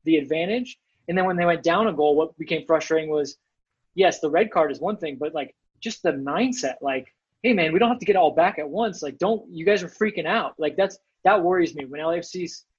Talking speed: 245 wpm